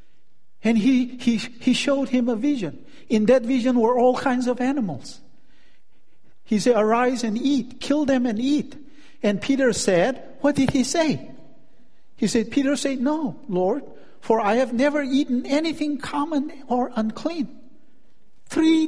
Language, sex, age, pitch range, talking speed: English, male, 50-69, 175-260 Hz, 155 wpm